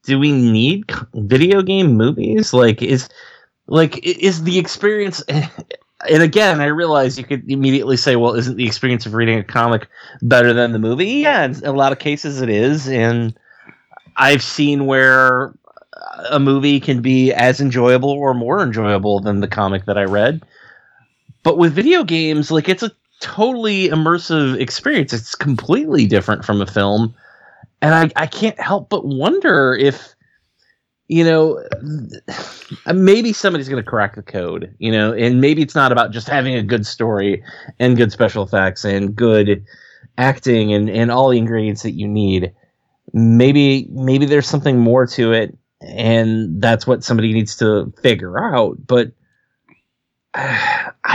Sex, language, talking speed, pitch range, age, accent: male, English, 160 wpm, 115-150 Hz, 20-39, American